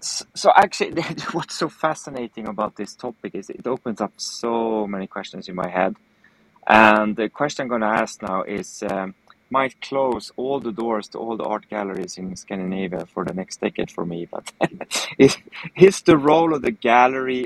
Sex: male